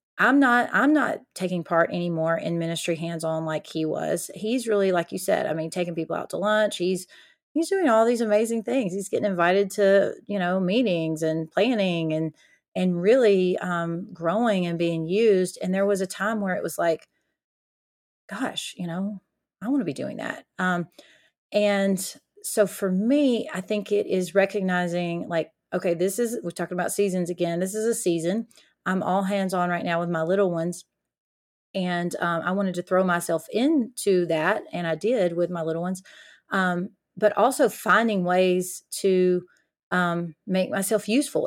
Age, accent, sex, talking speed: 30-49, American, female, 180 wpm